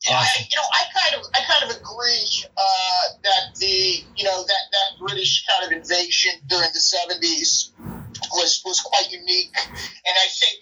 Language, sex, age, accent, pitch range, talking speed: English, male, 30-49, American, 185-295 Hz, 170 wpm